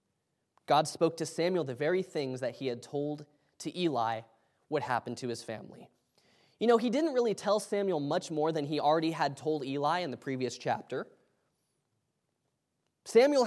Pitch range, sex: 145-215 Hz, male